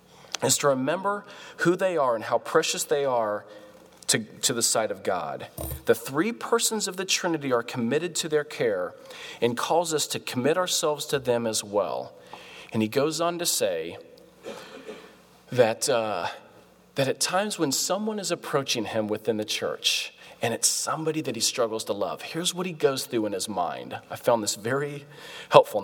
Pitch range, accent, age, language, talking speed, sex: 125-200 Hz, American, 40-59, English, 180 wpm, male